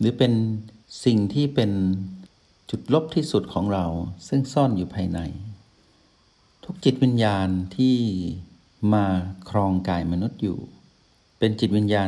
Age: 60-79